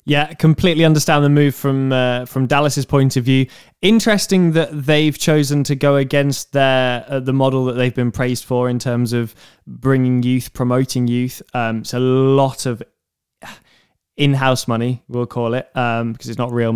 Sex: male